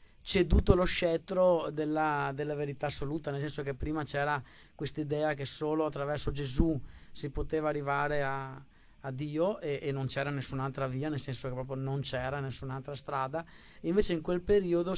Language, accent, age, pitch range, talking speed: Italian, native, 30-49, 140-165 Hz, 170 wpm